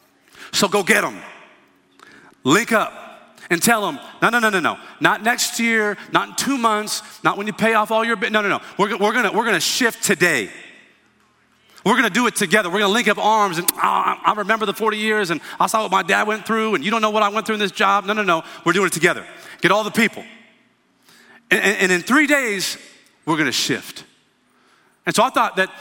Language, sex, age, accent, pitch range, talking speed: English, male, 40-59, American, 195-230 Hz, 230 wpm